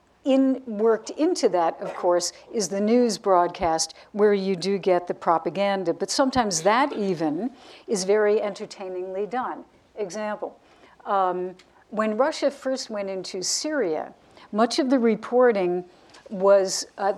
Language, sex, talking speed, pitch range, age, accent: English, female, 135 wpm, 190-235 Hz, 60-79, American